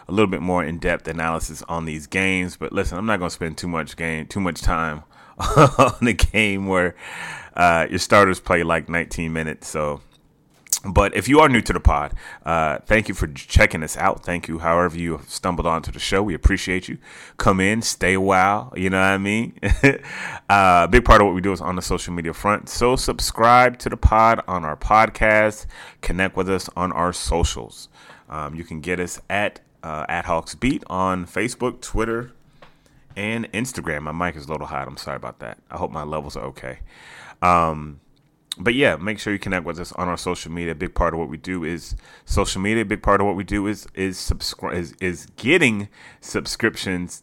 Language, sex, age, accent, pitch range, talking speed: English, male, 30-49, American, 80-100 Hz, 210 wpm